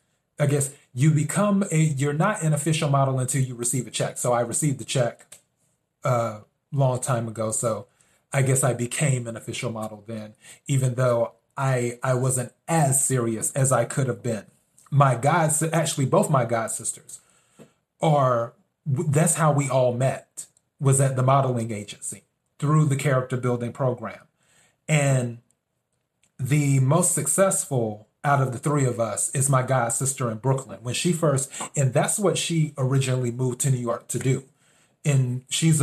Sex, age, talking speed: male, 30-49, 170 wpm